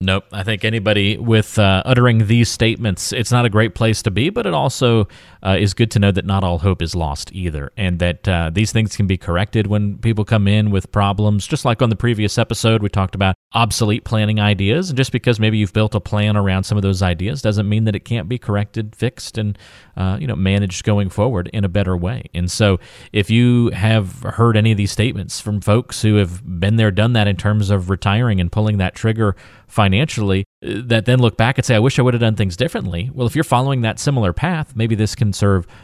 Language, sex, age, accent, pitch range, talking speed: English, male, 30-49, American, 95-115 Hz, 235 wpm